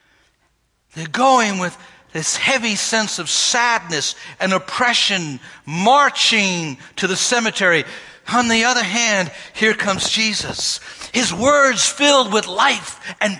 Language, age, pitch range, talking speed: English, 60-79, 170-260 Hz, 120 wpm